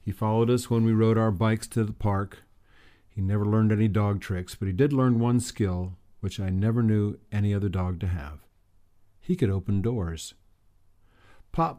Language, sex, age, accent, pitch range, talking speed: English, male, 50-69, American, 95-115 Hz, 190 wpm